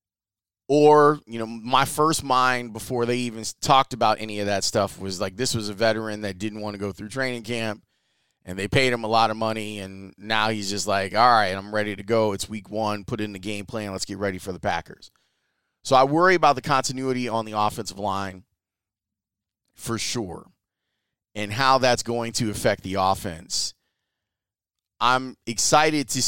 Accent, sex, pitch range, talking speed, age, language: American, male, 105-130 Hz, 195 wpm, 30-49, English